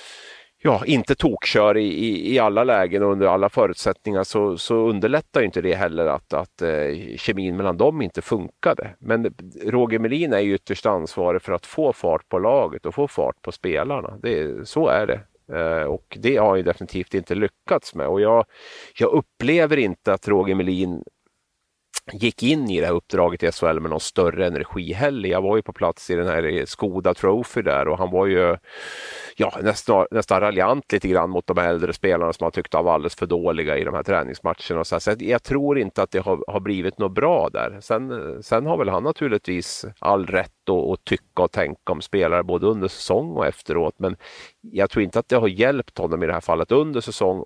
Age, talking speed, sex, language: 30-49, 205 wpm, male, Swedish